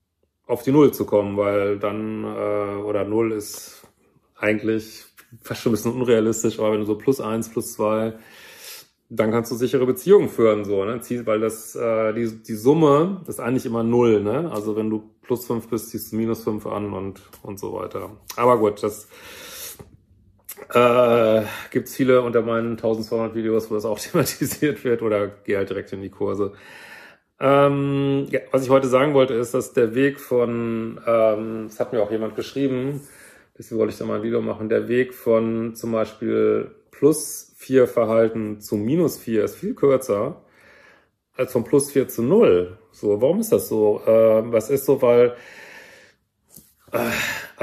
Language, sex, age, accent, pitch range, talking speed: German, male, 30-49, German, 110-130 Hz, 175 wpm